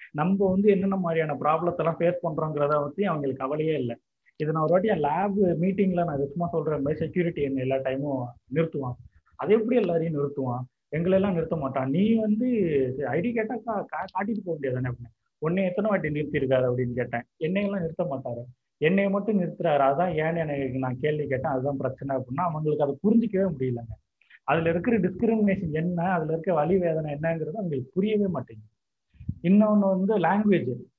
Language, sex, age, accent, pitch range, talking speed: Tamil, male, 30-49, native, 140-195 Hz, 165 wpm